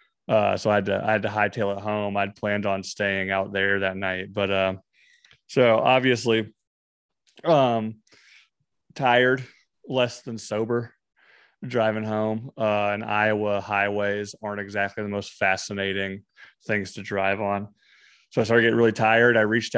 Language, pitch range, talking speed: English, 100-110 Hz, 155 wpm